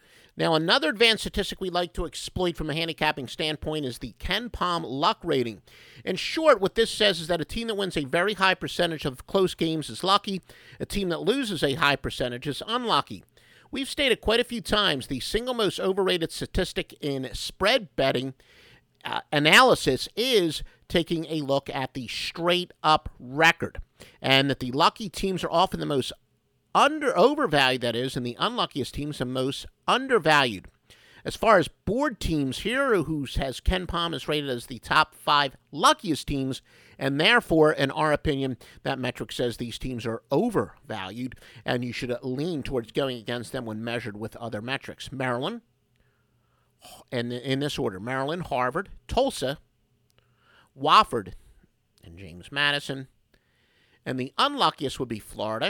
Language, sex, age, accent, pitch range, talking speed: English, male, 50-69, American, 125-175 Hz, 165 wpm